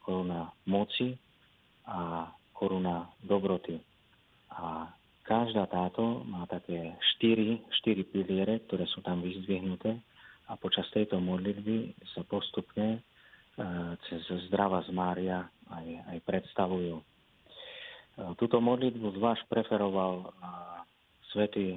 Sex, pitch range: male, 90-105 Hz